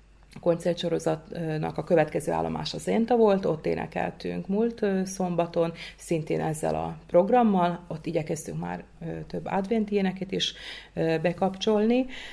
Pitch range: 145-190 Hz